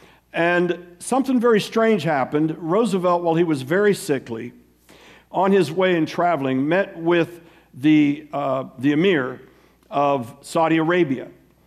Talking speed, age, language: 130 wpm, 60-79, English